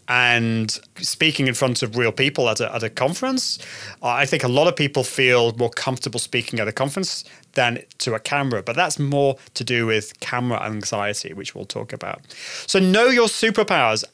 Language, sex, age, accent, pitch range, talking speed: English, male, 30-49, British, 130-185 Hz, 185 wpm